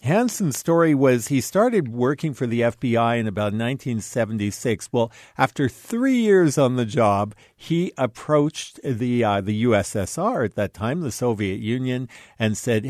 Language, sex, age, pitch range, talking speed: English, male, 50-69, 110-140 Hz, 155 wpm